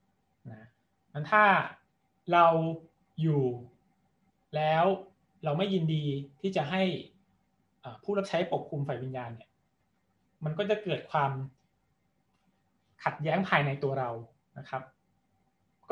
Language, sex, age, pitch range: Thai, male, 20-39, 140-185 Hz